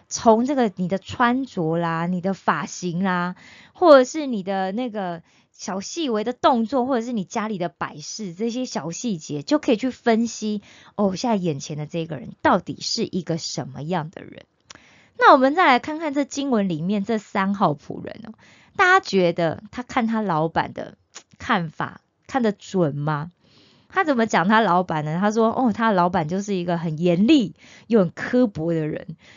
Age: 20-39